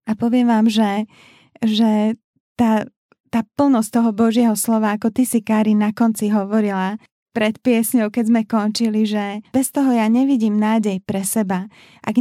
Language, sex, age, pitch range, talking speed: Slovak, female, 20-39, 200-230 Hz, 155 wpm